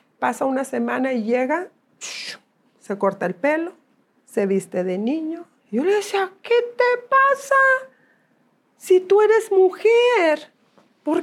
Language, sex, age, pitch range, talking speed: English, female, 50-69, 205-270 Hz, 130 wpm